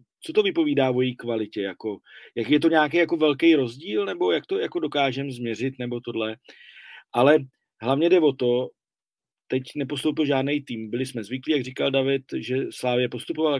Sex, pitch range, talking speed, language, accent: male, 130-160 Hz, 175 wpm, Czech, native